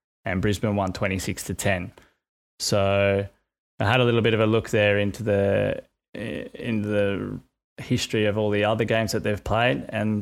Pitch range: 95-110 Hz